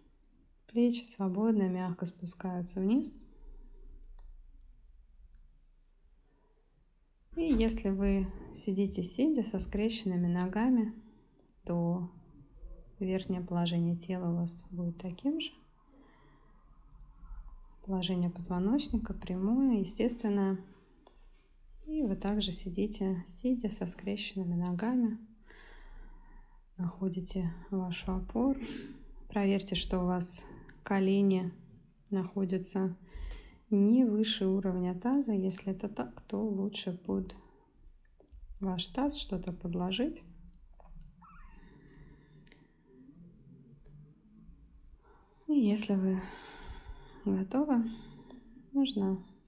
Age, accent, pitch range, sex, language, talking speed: 20-39, native, 175-215 Hz, female, Russian, 75 wpm